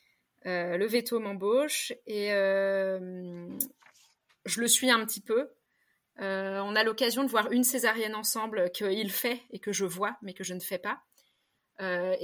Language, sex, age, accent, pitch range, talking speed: French, female, 20-39, French, 185-235 Hz, 165 wpm